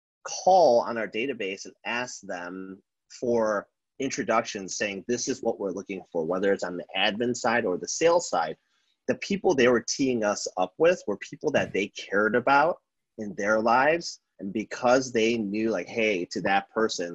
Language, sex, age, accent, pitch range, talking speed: English, male, 30-49, American, 95-120 Hz, 180 wpm